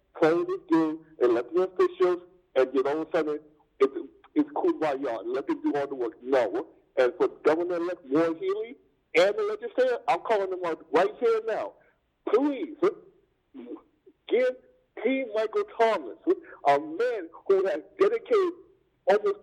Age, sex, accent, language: 50-69, male, American, English